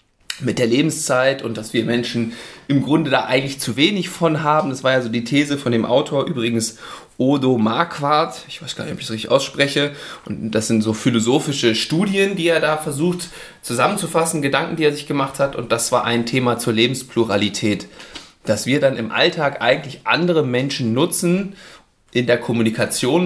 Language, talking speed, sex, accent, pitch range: German, 185 wpm, male, German, 115-150 Hz